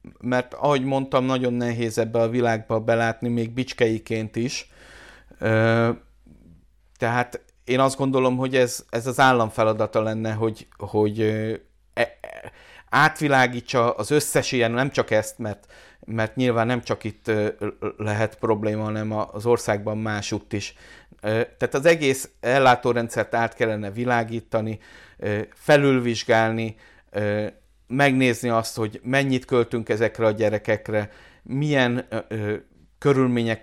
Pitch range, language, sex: 110-130 Hz, Hungarian, male